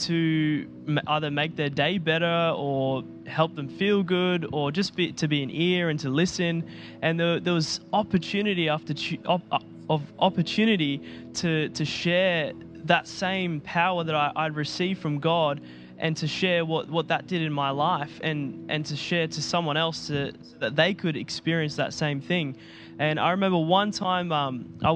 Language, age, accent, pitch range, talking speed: English, 10-29, Australian, 150-180 Hz, 175 wpm